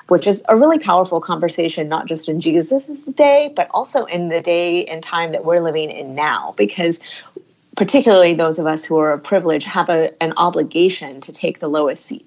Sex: female